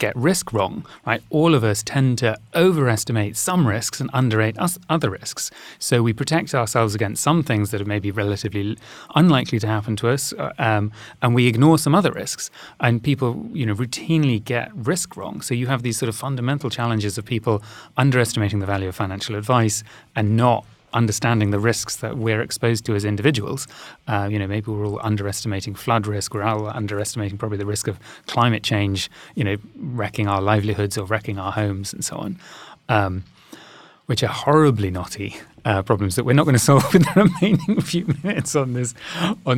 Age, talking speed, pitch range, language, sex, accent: 30-49, 190 wpm, 105-130 Hz, English, male, British